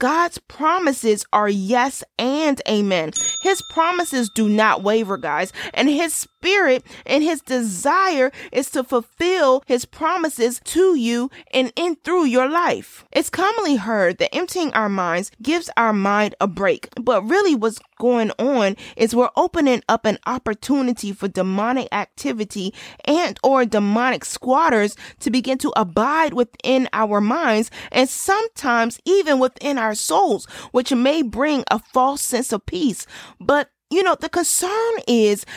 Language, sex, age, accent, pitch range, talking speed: English, female, 30-49, American, 220-295 Hz, 145 wpm